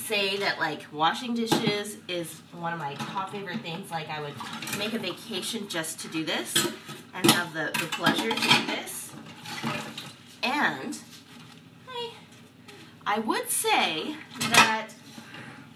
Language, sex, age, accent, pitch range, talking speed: English, female, 20-39, American, 210-310 Hz, 135 wpm